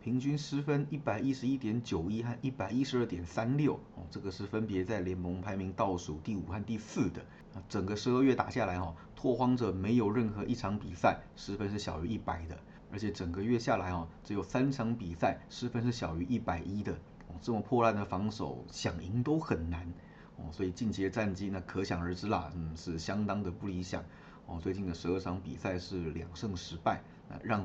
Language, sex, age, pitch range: Chinese, male, 30-49, 90-115 Hz